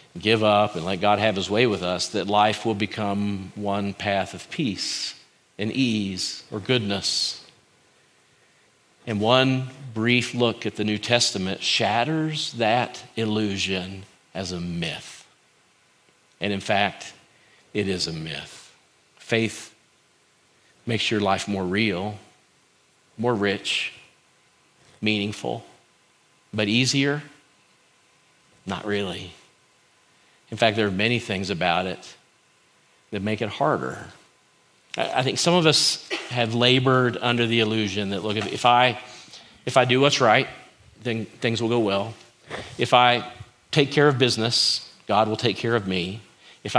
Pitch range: 100-120 Hz